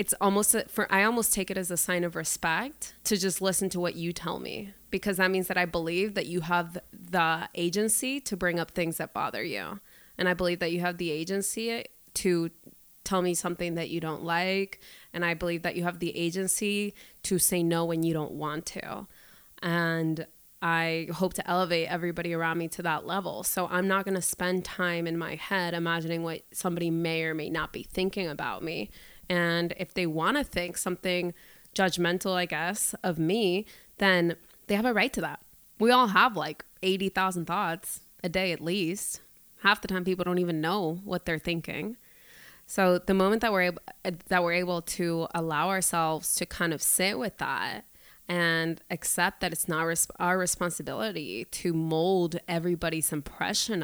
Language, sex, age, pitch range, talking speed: English, female, 20-39, 165-190 Hz, 185 wpm